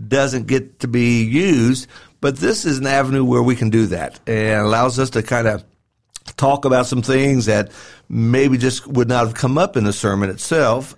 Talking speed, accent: 200 wpm, American